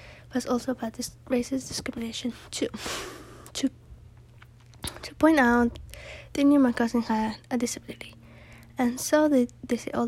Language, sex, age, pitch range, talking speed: English, female, 20-39, 220-265 Hz, 145 wpm